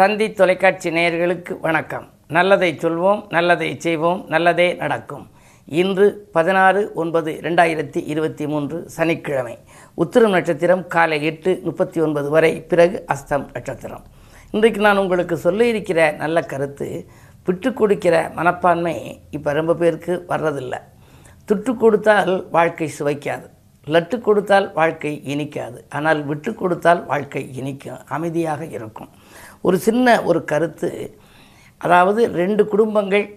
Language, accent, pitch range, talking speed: Tamil, native, 155-195 Hz, 110 wpm